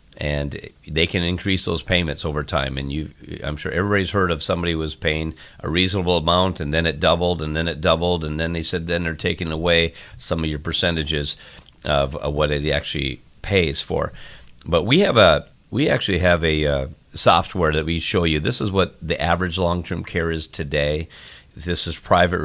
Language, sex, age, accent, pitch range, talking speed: English, male, 40-59, American, 75-90 Hz, 200 wpm